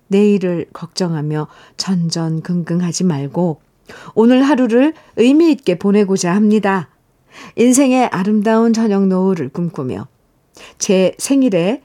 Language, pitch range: Korean, 175-230 Hz